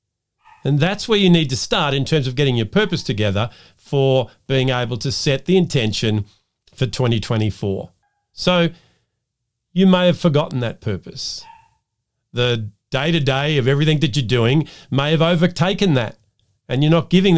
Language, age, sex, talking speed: English, 50-69, male, 160 wpm